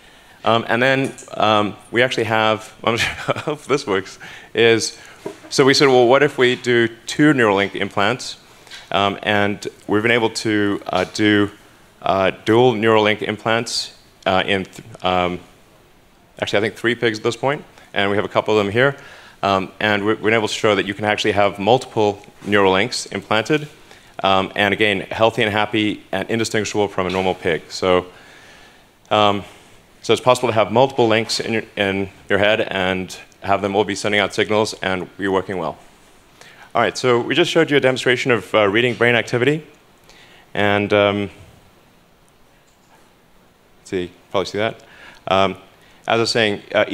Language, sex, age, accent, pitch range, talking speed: English, male, 30-49, American, 95-115 Hz, 175 wpm